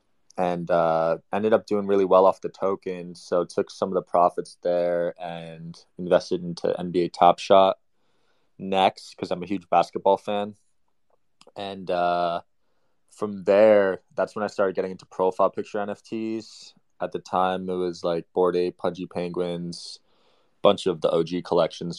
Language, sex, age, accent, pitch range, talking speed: English, male, 20-39, American, 85-95 Hz, 160 wpm